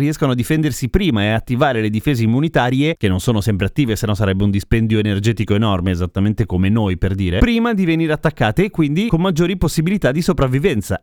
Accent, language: native, Italian